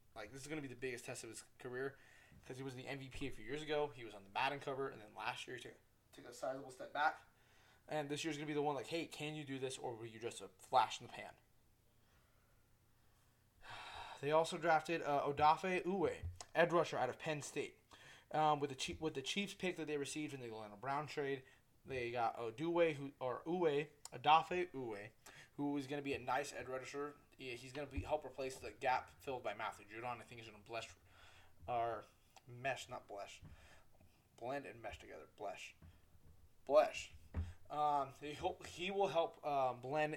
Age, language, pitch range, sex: 20-39, English, 115-150 Hz, male